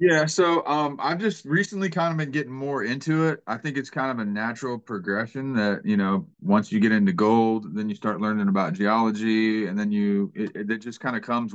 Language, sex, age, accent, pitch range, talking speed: English, male, 30-49, American, 110-150 Hz, 230 wpm